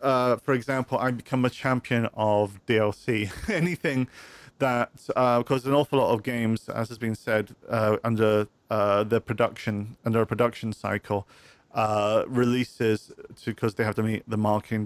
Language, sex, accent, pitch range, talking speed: English, male, British, 105-120 Hz, 165 wpm